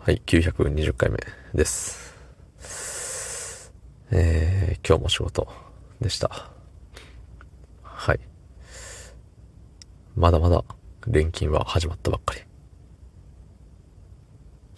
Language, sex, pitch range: Japanese, male, 80-105 Hz